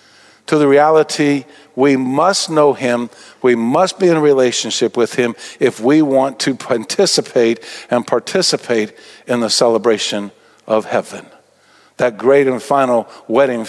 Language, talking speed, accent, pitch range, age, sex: English, 140 wpm, American, 130-160 Hz, 50-69, male